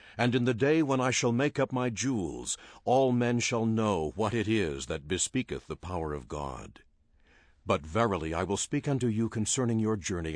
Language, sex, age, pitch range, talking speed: English, male, 60-79, 85-125 Hz, 195 wpm